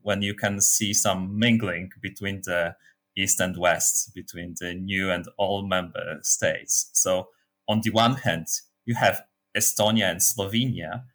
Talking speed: 150 wpm